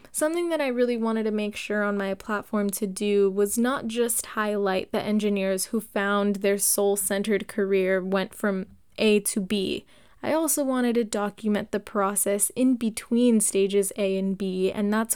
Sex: female